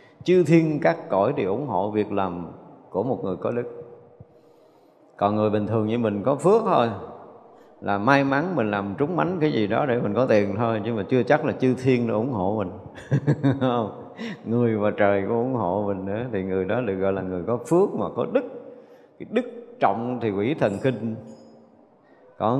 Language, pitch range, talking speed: Vietnamese, 105-155 Hz, 200 wpm